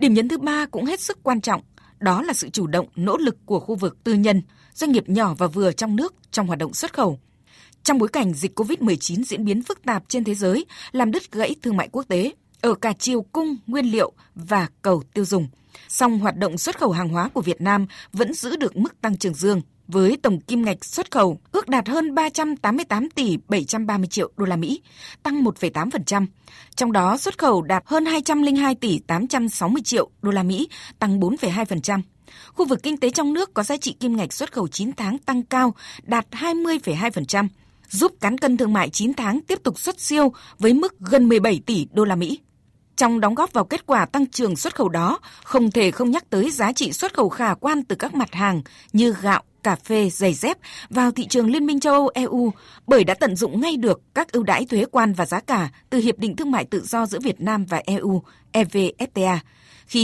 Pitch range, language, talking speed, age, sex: 190-260 Hz, Vietnamese, 220 wpm, 20-39, female